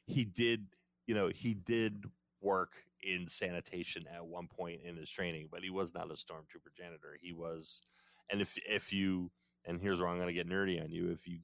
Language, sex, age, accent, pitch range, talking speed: English, male, 30-49, American, 80-95 Hz, 210 wpm